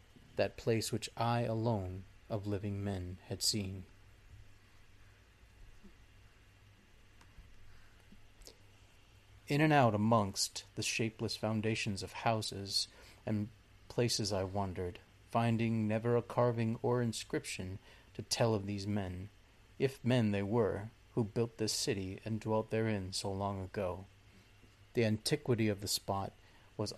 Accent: American